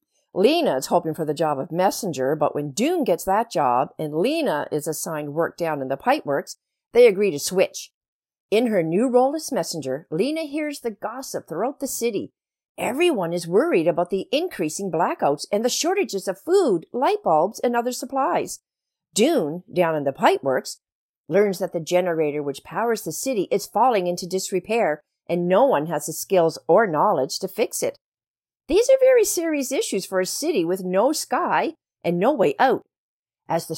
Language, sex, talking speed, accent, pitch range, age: English, female, 180 wpm, American, 160-265 Hz, 50-69